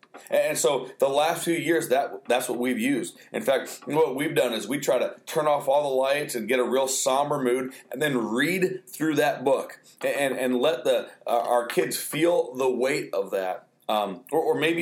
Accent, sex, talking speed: American, male, 215 wpm